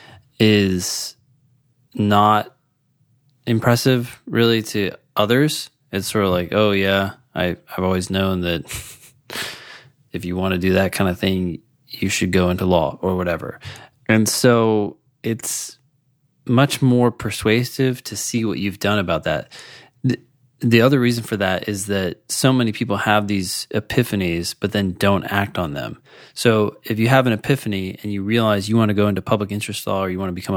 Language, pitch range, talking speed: English, 95-125 Hz, 170 wpm